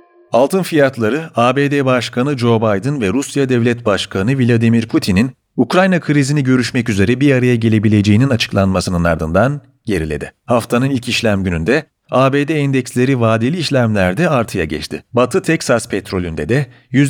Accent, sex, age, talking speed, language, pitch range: native, male, 40-59, 125 wpm, Turkish, 100-145 Hz